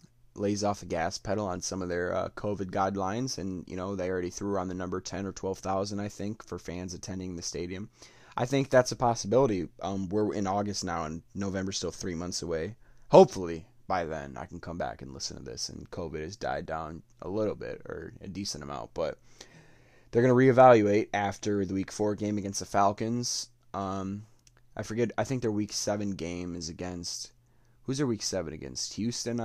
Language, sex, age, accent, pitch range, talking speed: English, male, 20-39, American, 90-120 Hz, 205 wpm